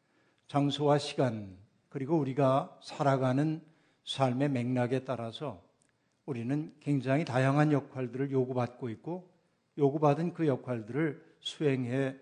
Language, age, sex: Korean, 60-79, male